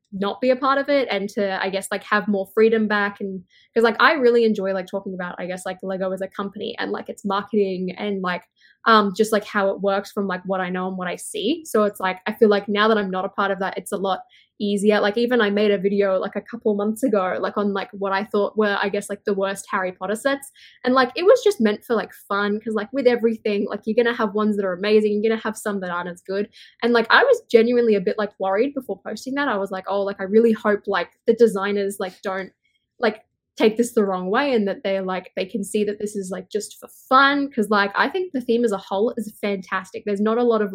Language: English